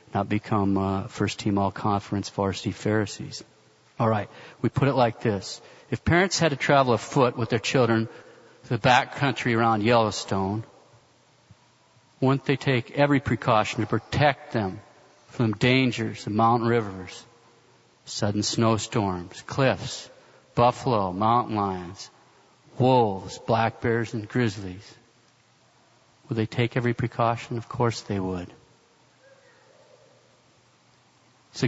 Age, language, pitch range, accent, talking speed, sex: 50-69, English, 110-130 Hz, American, 115 wpm, male